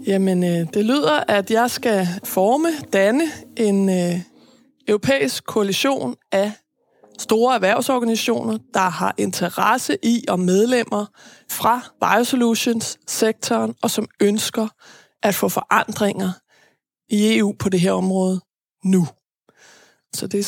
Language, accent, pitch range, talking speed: Danish, native, 195-240 Hz, 115 wpm